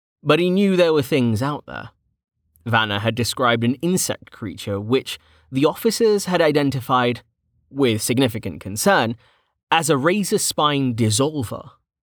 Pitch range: 105-140 Hz